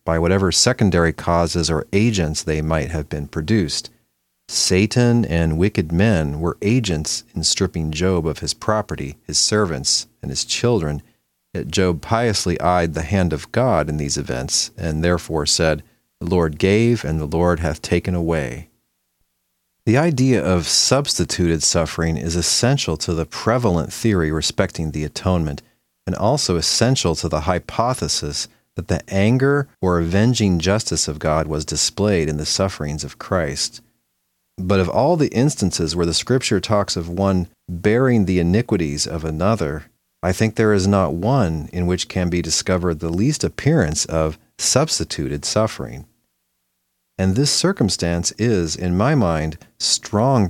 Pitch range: 80-105 Hz